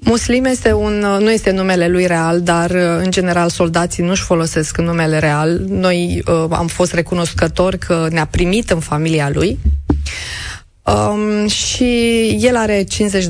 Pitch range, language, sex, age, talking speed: 160-205 Hz, Romanian, female, 20-39, 145 wpm